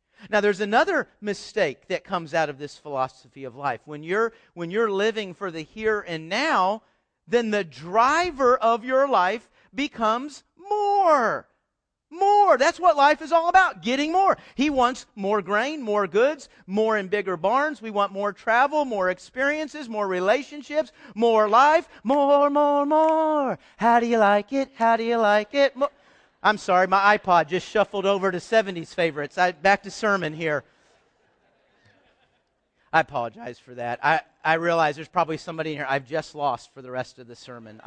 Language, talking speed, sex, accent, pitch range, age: English, 175 wpm, male, American, 160-265 Hz, 40-59